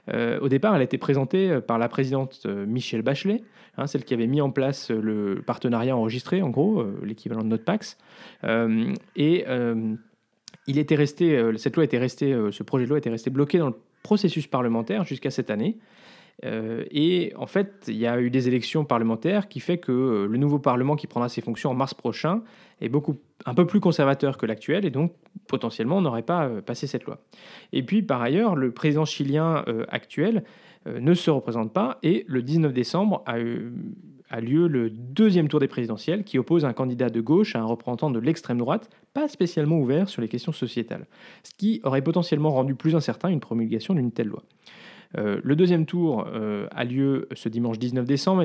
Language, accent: French, French